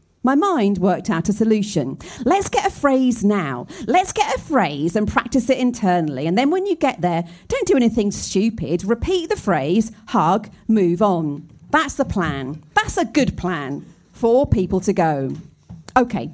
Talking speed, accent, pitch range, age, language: 175 wpm, British, 180-260 Hz, 40-59, English